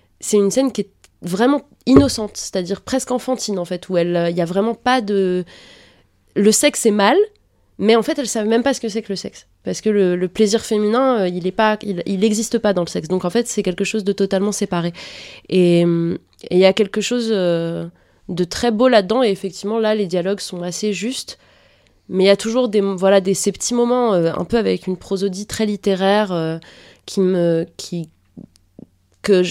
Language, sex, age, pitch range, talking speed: French, female, 20-39, 170-215 Hz, 215 wpm